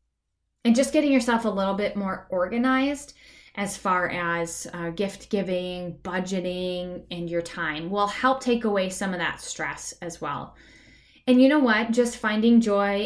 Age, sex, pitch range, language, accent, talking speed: 10-29, female, 180-225 Hz, English, American, 165 wpm